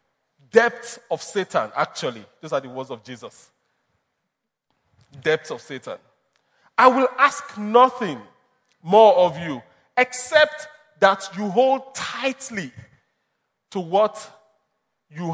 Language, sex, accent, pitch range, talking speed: English, male, Nigerian, 165-270 Hz, 110 wpm